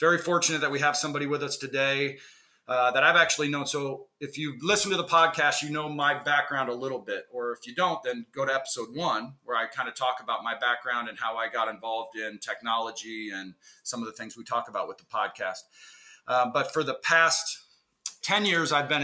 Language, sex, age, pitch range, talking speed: English, male, 40-59, 120-150 Hz, 225 wpm